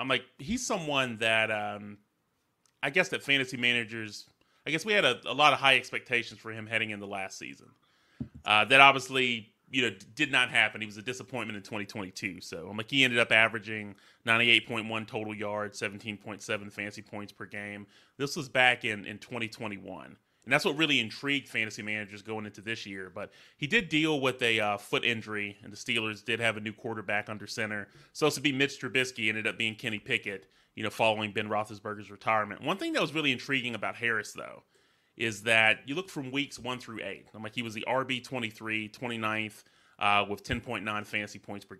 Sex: male